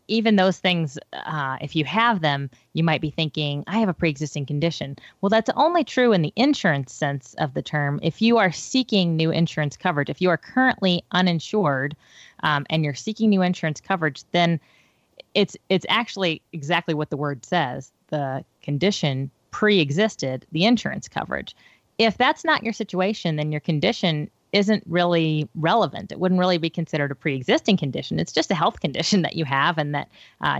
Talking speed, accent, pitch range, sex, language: 180 wpm, American, 145-190 Hz, female, English